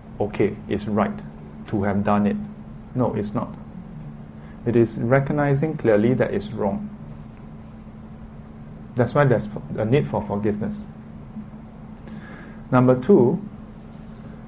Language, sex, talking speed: English, male, 110 wpm